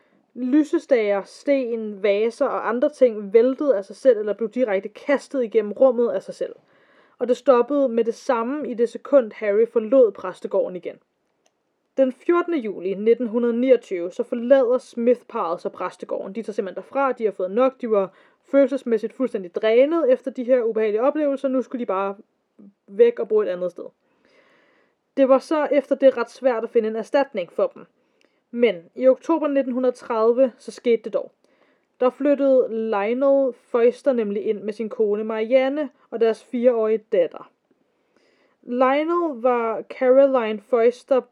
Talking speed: 155 wpm